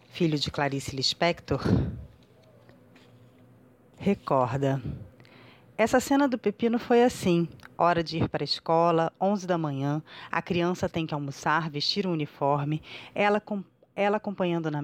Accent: Brazilian